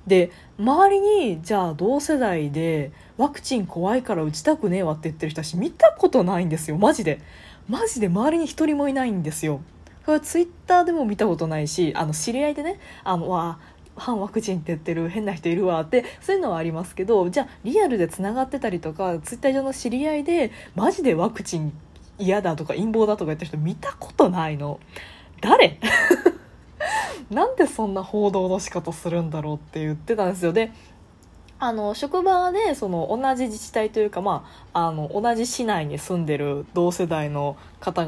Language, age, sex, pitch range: Japanese, 20-39, female, 170-270 Hz